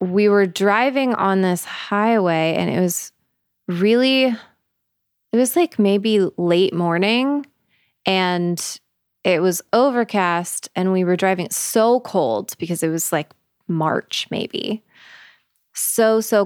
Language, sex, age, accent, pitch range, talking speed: English, female, 20-39, American, 175-210 Hz, 125 wpm